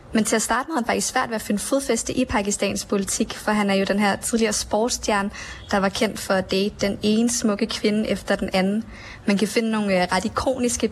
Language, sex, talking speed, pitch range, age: Danish, female, 230 wpm, 200-225 Hz, 20-39